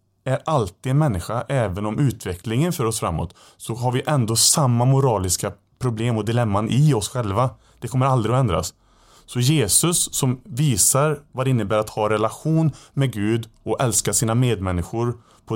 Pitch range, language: 100-120 Hz, Swedish